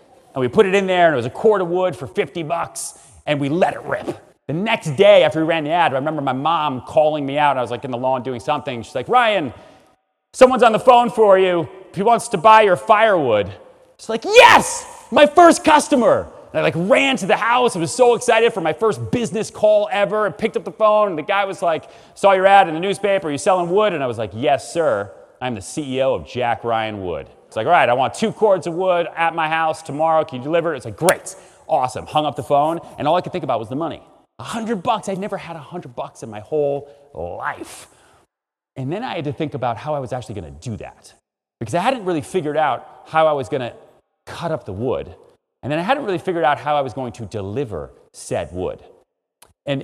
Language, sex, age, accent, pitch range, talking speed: English, male, 30-49, American, 145-215 Hz, 245 wpm